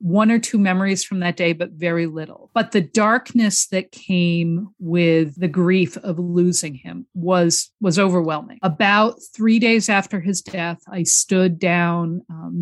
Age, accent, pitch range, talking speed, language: 50-69, American, 165-205 Hz, 160 wpm, English